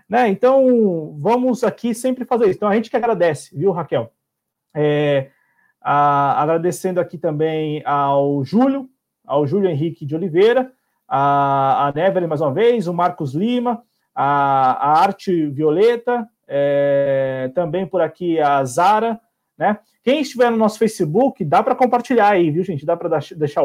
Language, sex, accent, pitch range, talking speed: Portuguese, male, Brazilian, 145-215 Hz, 150 wpm